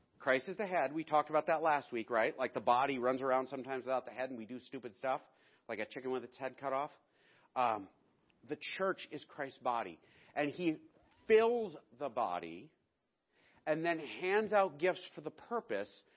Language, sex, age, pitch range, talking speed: English, male, 40-59, 130-170 Hz, 195 wpm